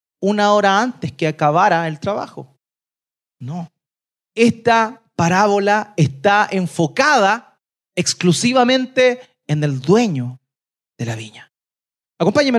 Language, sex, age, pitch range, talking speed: Spanish, male, 30-49, 150-225 Hz, 95 wpm